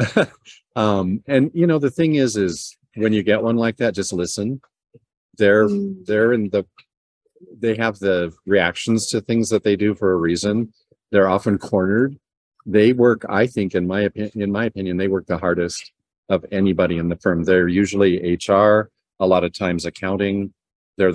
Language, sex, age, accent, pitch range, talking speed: English, male, 50-69, American, 90-110 Hz, 180 wpm